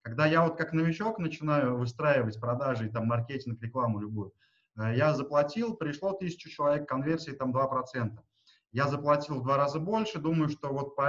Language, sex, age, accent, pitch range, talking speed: Russian, male, 20-39, native, 130-160 Hz, 160 wpm